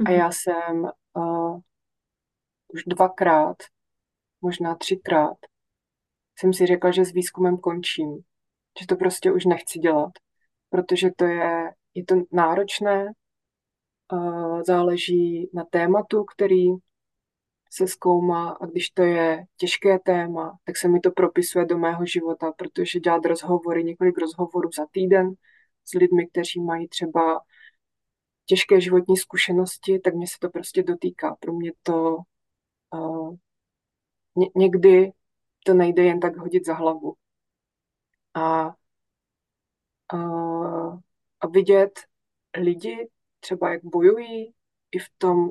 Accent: native